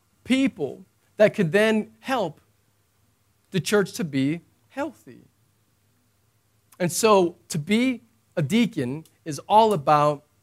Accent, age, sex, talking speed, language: American, 40-59, male, 110 wpm, English